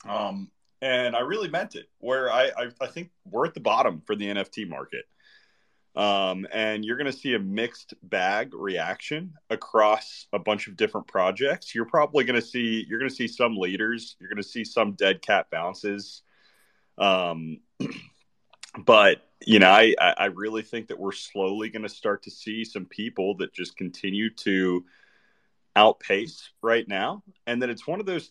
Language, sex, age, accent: English, male, 30-49, American